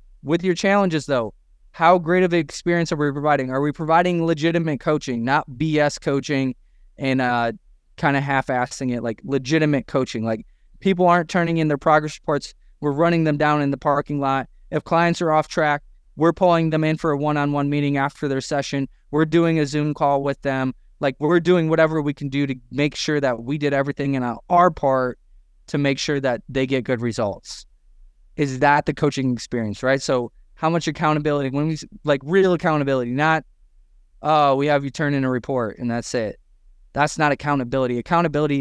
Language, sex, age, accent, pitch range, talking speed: English, male, 20-39, American, 130-155 Hz, 195 wpm